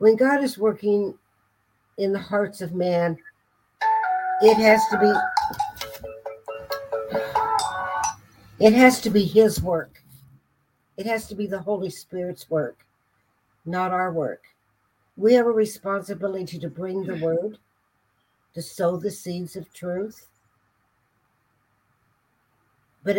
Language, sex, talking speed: English, female, 115 wpm